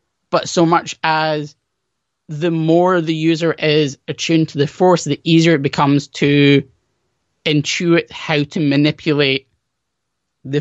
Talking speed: 130 wpm